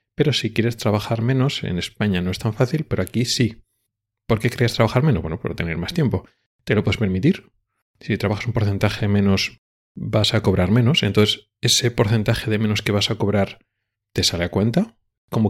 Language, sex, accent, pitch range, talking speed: Spanish, male, Spanish, 100-120 Hz, 200 wpm